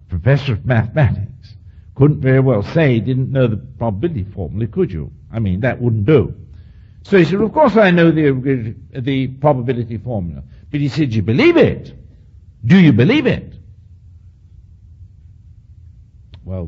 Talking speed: 160 wpm